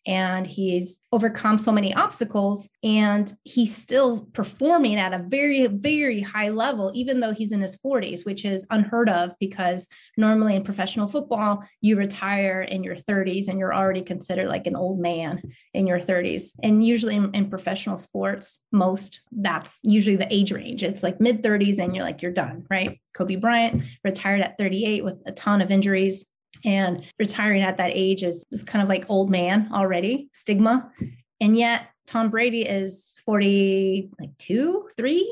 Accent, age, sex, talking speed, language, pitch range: American, 30-49, female, 170 wpm, English, 190-235 Hz